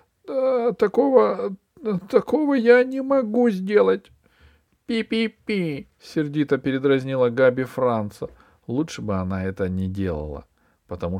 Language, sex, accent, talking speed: Russian, male, native, 105 wpm